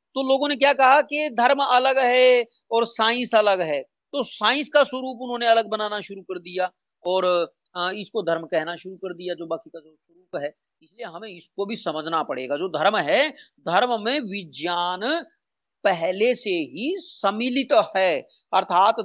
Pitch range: 175-235 Hz